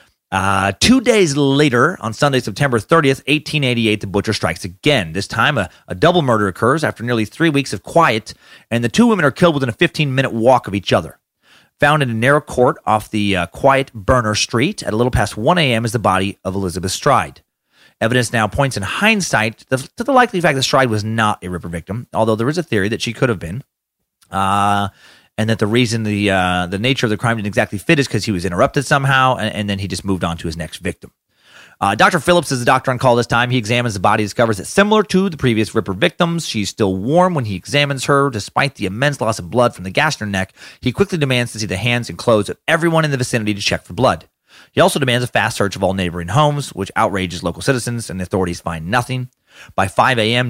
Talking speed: 240 wpm